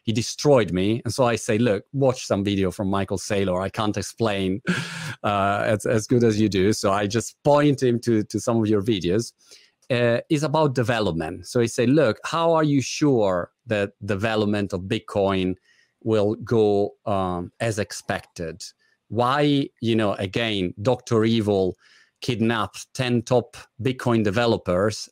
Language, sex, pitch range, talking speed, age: Italian, male, 100-120 Hz, 160 wpm, 40-59